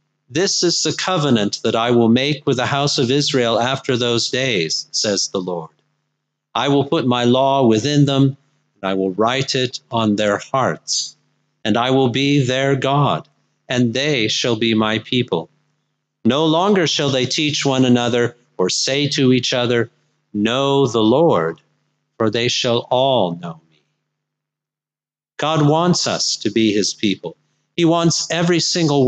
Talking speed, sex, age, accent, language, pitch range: 160 wpm, male, 50-69, American, English, 110-145 Hz